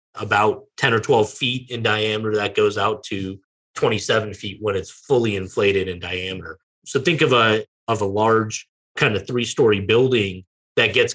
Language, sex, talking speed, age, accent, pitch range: English, male, 170 wpm, 30-49, American, 105-140 Hz